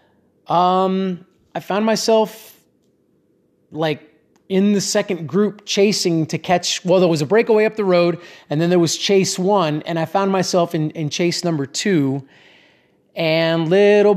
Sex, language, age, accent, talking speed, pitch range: male, English, 30-49, American, 155 wpm, 155-180 Hz